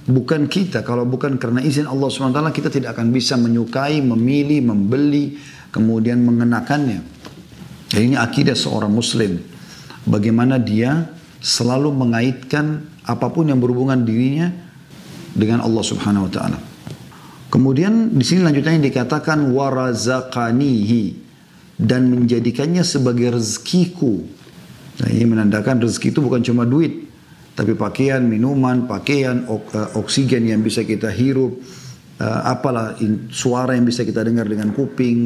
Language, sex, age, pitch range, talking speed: Indonesian, male, 40-59, 115-145 Hz, 115 wpm